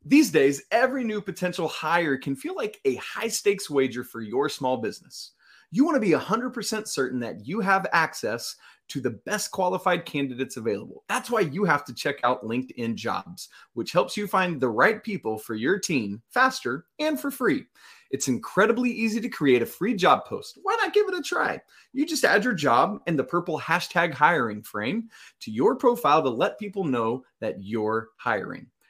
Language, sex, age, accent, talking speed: English, male, 30-49, American, 190 wpm